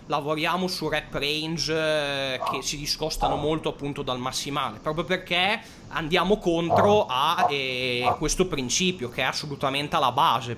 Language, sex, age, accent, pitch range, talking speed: Italian, male, 20-39, native, 140-165 Hz, 135 wpm